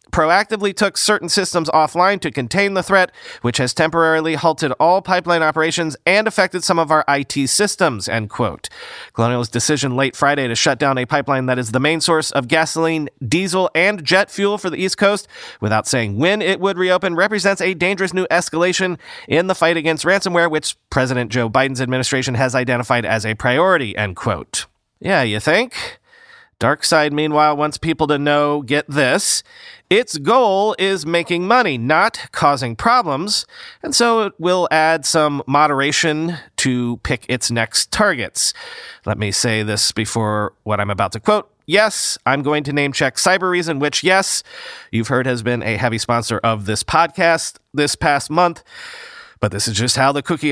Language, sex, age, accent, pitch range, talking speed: English, male, 30-49, American, 130-185 Hz, 175 wpm